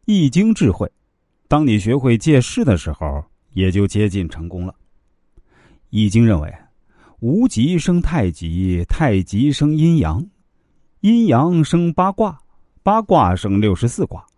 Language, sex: Chinese, male